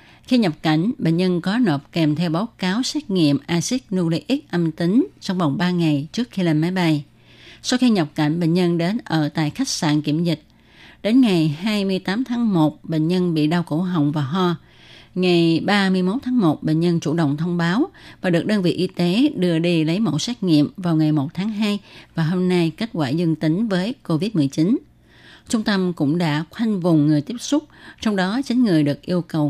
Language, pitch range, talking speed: Vietnamese, 155-205 Hz, 210 wpm